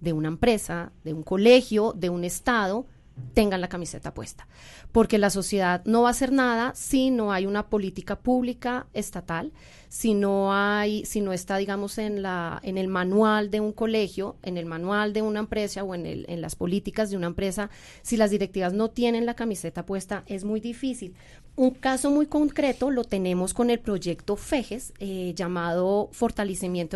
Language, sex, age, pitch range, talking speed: Spanish, female, 30-49, 190-245 Hz, 185 wpm